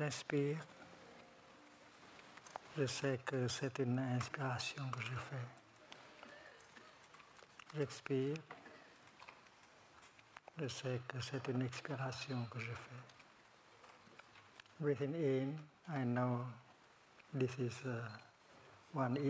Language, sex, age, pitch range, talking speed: English, male, 60-79, 125-145 Hz, 85 wpm